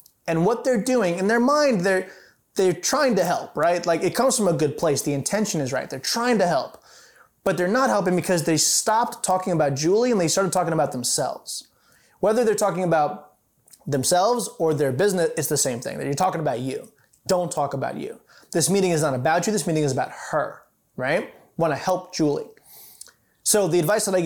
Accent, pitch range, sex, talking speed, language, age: American, 155-195 Hz, male, 215 wpm, English, 20-39